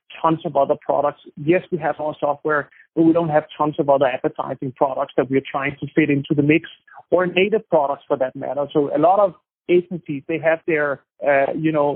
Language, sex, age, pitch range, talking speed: English, male, 30-49, 145-170 Hz, 215 wpm